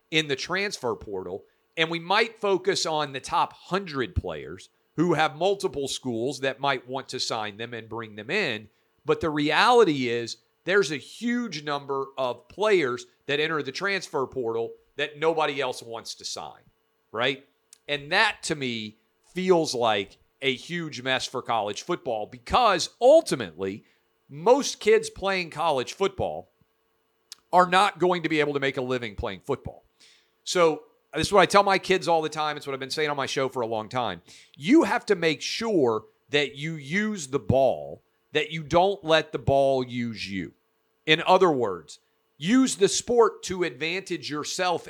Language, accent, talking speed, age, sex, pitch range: English, American, 175 wpm, 50-69, male, 130-180 Hz